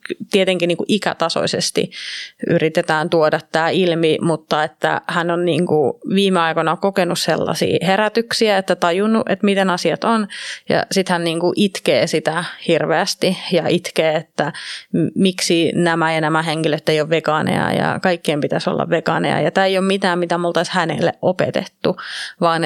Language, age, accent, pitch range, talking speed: Finnish, 30-49, native, 165-190 Hz, 150 wpm